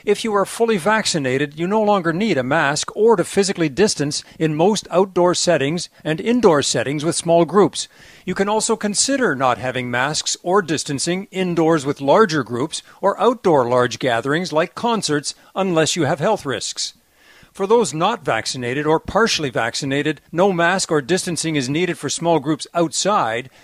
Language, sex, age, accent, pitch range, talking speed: English, male, 50-69, American, 125-180 Hz, 170 wpm